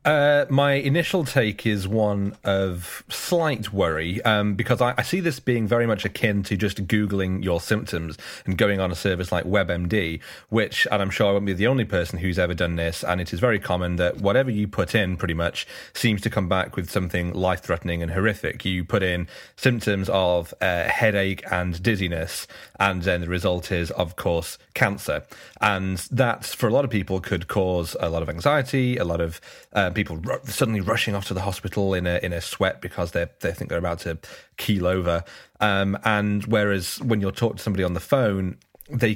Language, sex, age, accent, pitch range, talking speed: English, male, 30-49, British, 90-110 Hz, 205 wpm